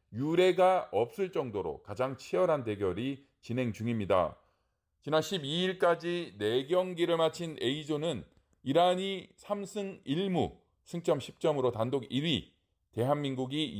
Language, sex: Korean, male